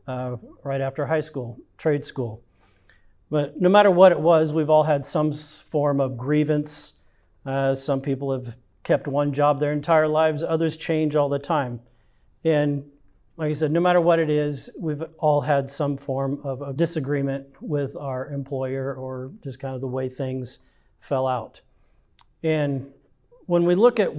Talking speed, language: 170 wpm, English